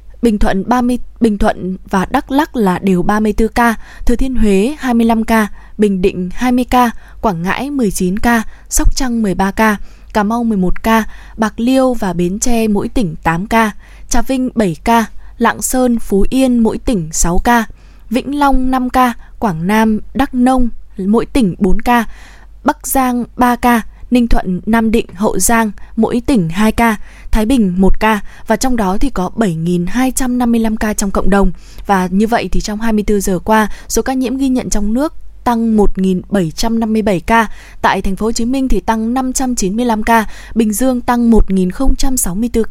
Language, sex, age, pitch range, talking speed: Vietnamese, female, 20-39, 195-245 Hz, 160 wpm